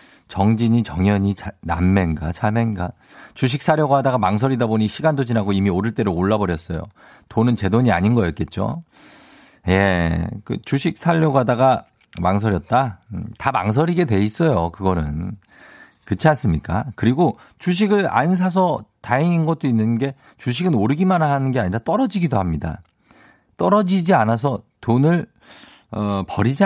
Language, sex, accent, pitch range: Korean, male, native, 95-160 Hz